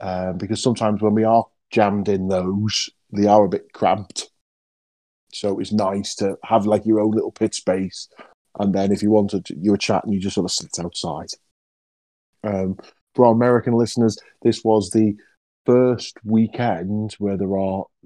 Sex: male